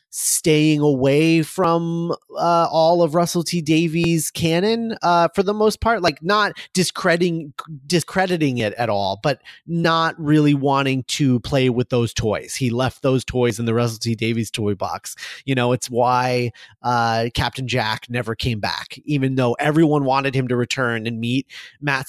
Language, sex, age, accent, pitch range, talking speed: English, male, 30-49, American, 125-155 Hz, 170 wpm